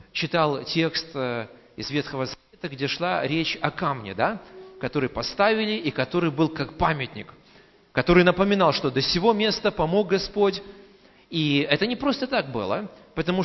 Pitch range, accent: 135-175 Hz, native